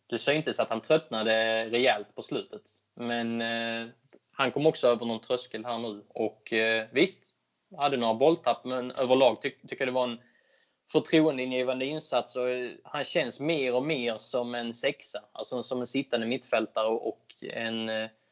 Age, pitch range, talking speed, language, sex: 20-39, 115-140 Hz, 175 wpm, Swedish, male